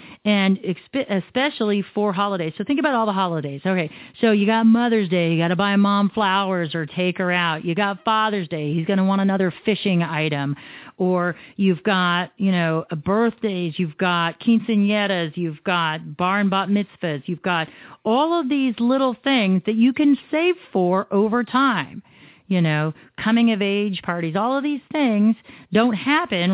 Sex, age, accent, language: female, 40-59, American, English